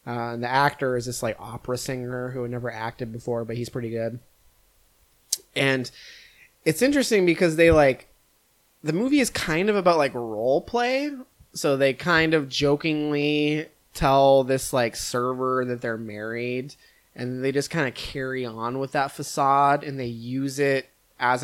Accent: American